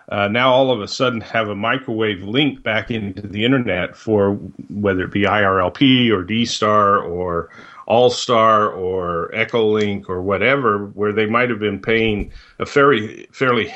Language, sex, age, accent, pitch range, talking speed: English, male, 40-59, American, 95-110 Hz, 155 wpm